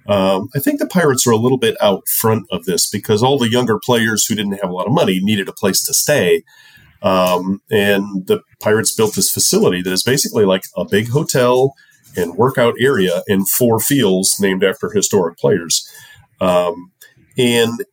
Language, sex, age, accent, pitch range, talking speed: English, male, 40-59, American, 95-130 Hz, 185 wpm